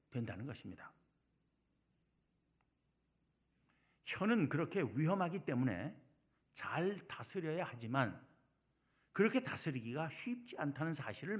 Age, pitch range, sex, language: 60-79, 125-175 Hz, male, Korean